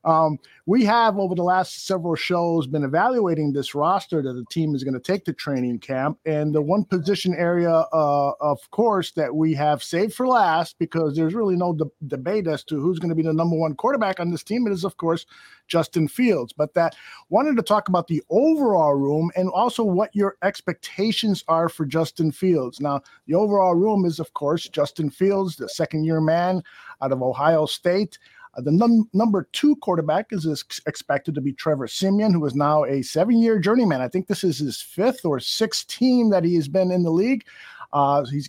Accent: American